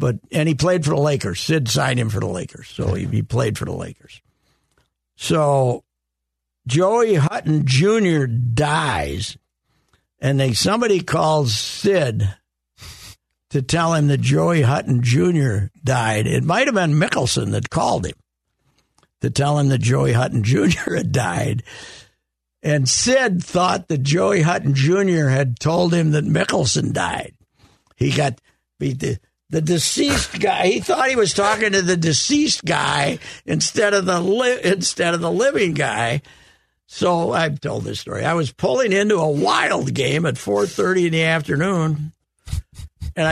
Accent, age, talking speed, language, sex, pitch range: American, 60-79, 155 wpm, English, male, 130-175 Hz